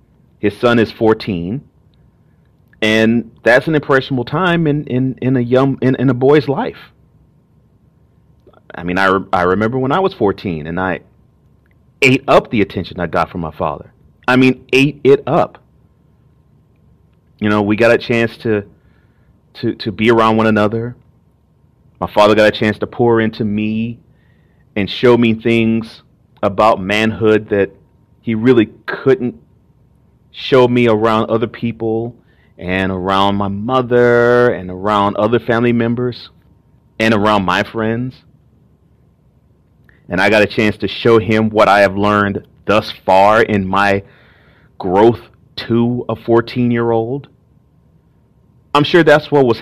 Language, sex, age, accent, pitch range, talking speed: English, male, 30-49, American, 105-130 Hz, 145 wpm